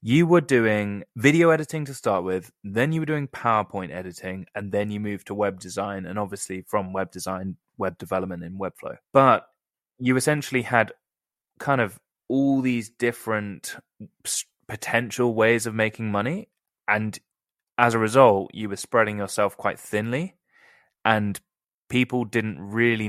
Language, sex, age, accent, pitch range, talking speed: English, male, 20-39, British, 100-130 Hz, 150 wpm